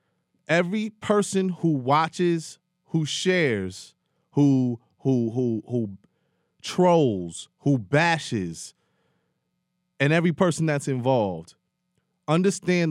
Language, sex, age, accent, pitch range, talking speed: English, male, 30-49, American, 140-215 Hz, 90 wpm